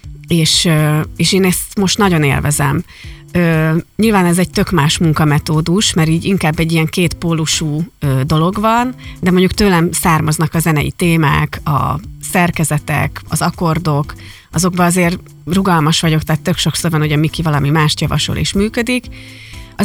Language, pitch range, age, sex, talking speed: Hungarian, 150-185 Hz, 30-49, female, 150 wpm